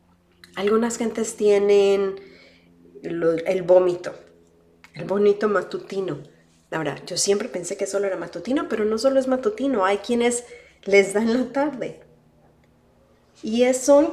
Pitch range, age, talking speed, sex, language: 175-240 Hz, 40-59, 125 wpm, female, Spanish